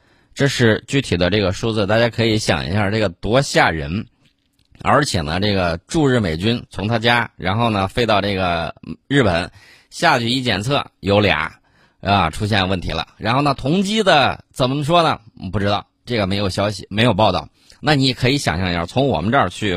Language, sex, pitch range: Chinese, male, 100-140 Hz